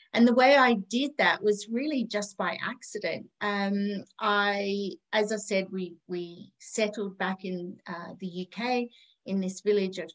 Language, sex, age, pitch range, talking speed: English, female, 30-49, 195-235 Hz, 165 wpm